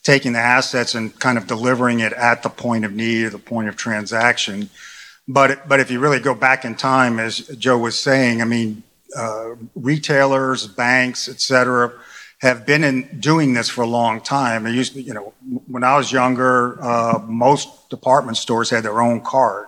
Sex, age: male, 40-59